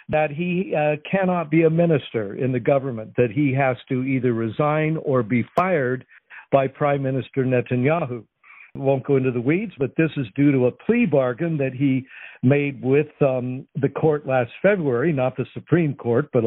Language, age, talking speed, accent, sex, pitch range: English, 60-79, 180 wpm, American, male, 125-155 Hz